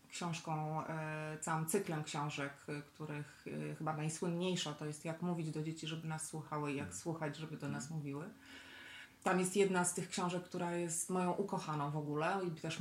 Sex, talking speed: female, 175 wpm